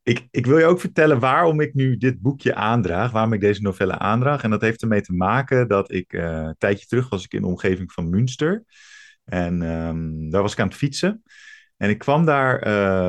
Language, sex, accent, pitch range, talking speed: Dutch, male, Dutch, 95-135 Hz, 225 wpm